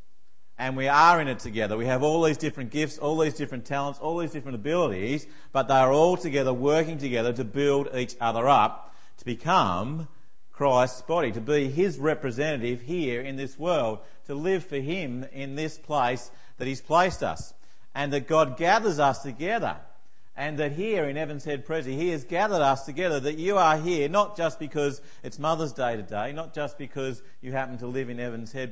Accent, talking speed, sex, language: Australian, 195 wpm, male, English